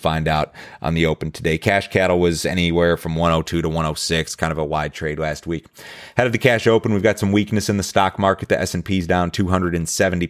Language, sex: English, male